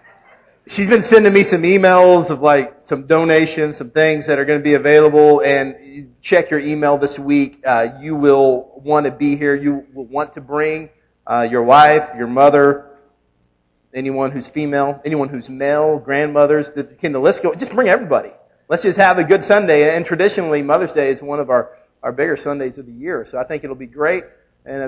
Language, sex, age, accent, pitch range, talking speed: English, male, 40-59, American, 135-155 Hz, 200 wpm